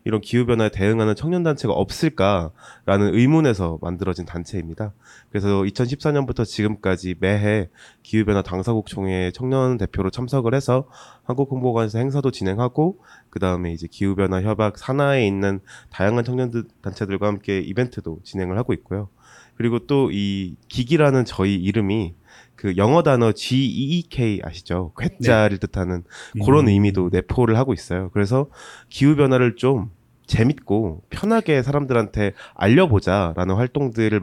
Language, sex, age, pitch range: Korean, male, 20-39, 95-125 Hz